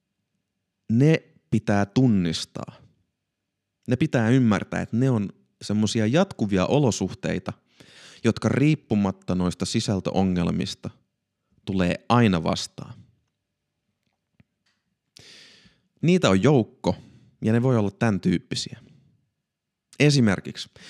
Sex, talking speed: male, 85 wpm